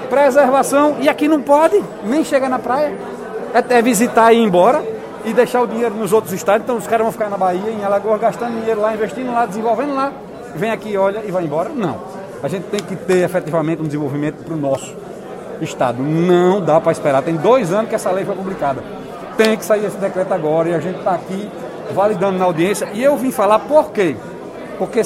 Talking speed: 215 wpm